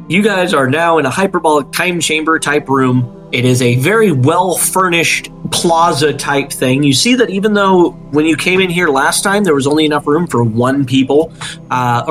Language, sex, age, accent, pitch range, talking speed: English, male, 30-49, American, 130-165 Hz, 205 wpm